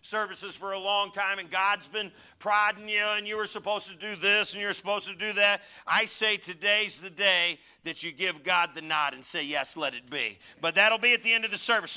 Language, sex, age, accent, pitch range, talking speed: English, male, 50-69, American, 155-200 Hz, 245 wpm